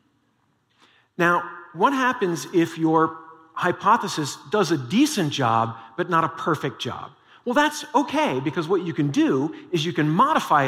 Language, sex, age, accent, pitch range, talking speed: English, male, 40-59, American, 140-175 Hz, 150 wpm